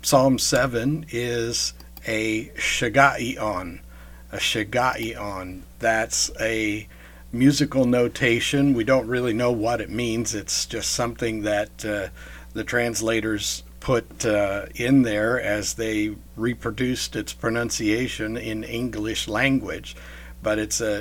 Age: 60-79